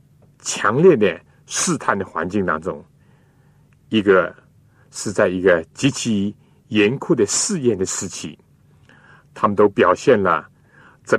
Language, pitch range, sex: Chinese, 110-145 Hz, male